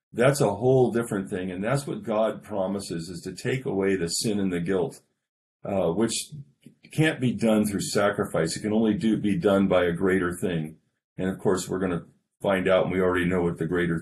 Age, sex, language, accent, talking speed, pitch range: 40-59, male, English, American, 220 wpm, 95-120 Hz